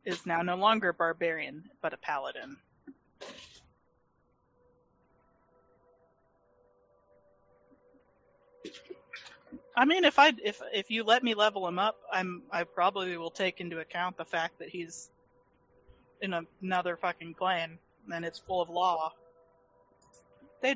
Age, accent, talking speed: 20-39, American, 125 wpm